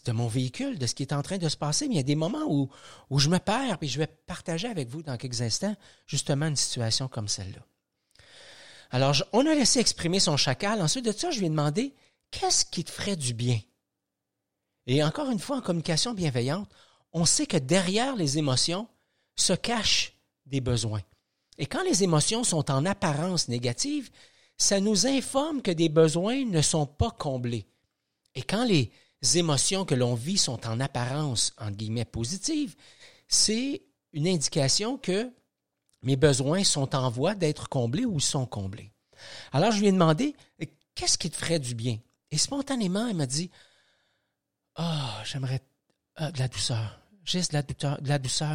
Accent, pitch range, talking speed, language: Canadian, 130-180 Hz, 185 wpm, French